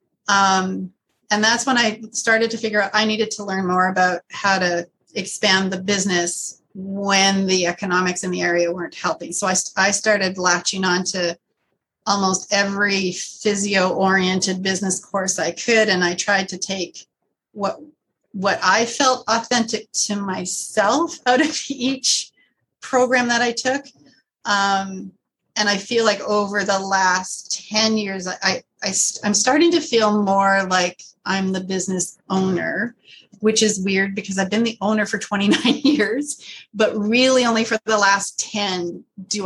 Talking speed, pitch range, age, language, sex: 160 wpm, 180-215 Hz, 30-49, English, female